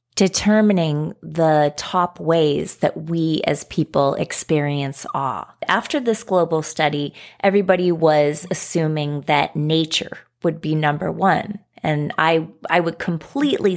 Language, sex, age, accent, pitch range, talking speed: English, female, 30-49, American, 150-185 Hz, 120 wpm